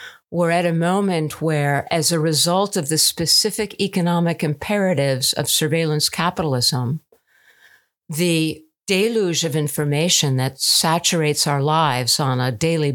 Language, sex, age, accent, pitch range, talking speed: English, female, 50-69, American, 150-175 Hz, 125 wpm